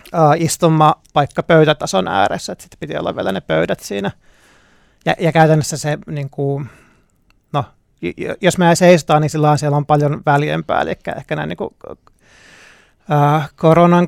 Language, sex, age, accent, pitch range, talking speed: Finnish, male, 30-49, native, 145-170 Hz, 150 wpm